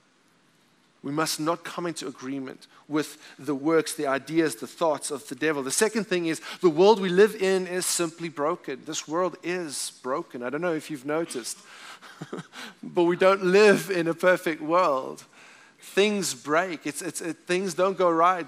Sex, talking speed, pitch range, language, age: male, 170 wpm, 165-205 Hz, English, 30-49